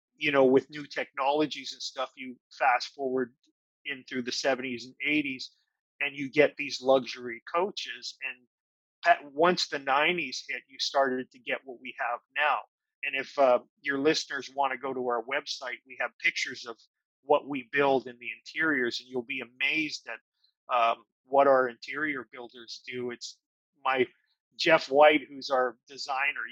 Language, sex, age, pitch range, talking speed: English, male, 30-49, 130-150 Hz, 165 wpm